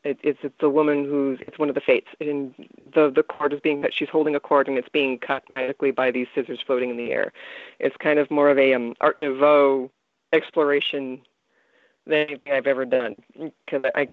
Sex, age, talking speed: female, 30-49, 210 wpm